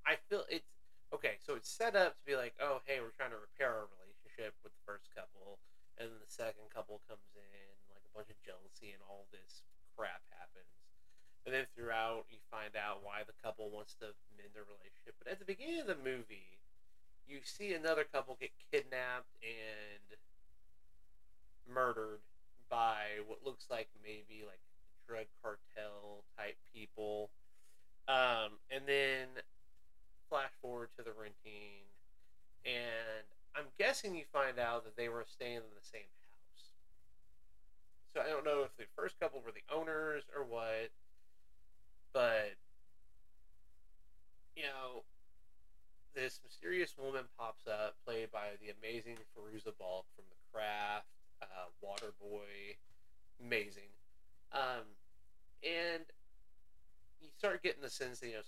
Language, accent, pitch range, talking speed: English, American, 95-120 Hz, 145 wpm